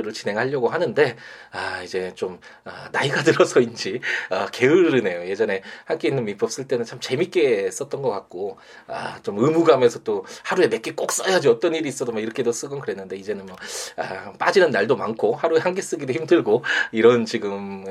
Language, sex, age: Korean, male, 20-39